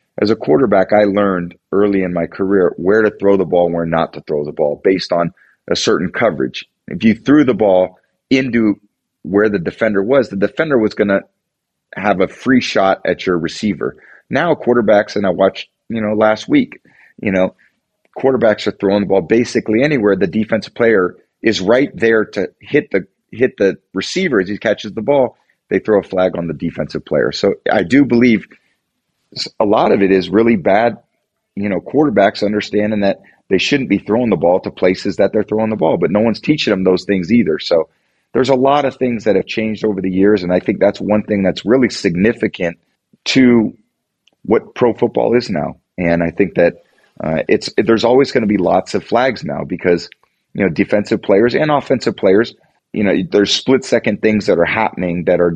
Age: 30-49